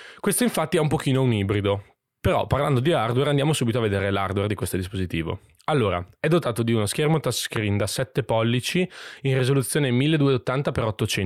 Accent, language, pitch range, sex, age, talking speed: native, Italian, 100-130 Hz, male, 20-39, 170 wpm